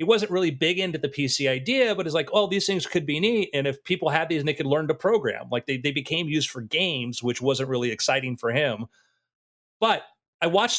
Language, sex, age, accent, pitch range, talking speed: English, male, 40-59, American, 120-155 Hz, 245 wpm